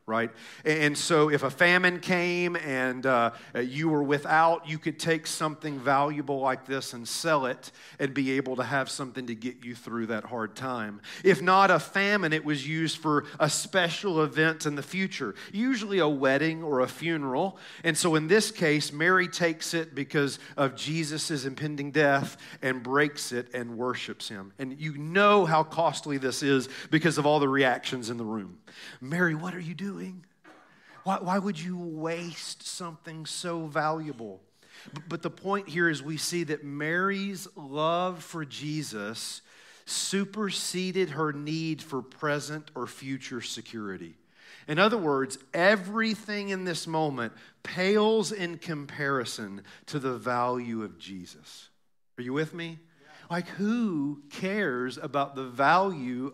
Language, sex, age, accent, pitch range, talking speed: English, male, 40-59, American, 130-175 Hz, 155 wpm